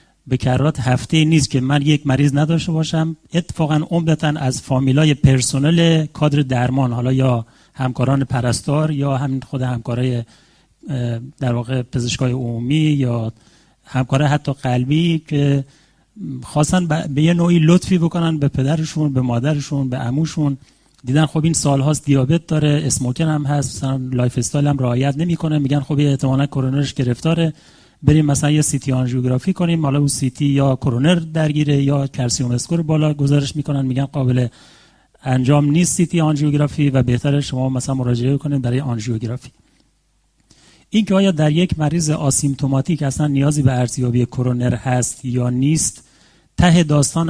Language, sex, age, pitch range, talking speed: Persian, male, 30-49, 125-155 Hz, 145 wpm